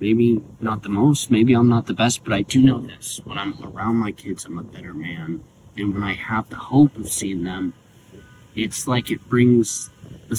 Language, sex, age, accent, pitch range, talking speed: English, male, 30-49, American, 105-130 Hz, 215 wpm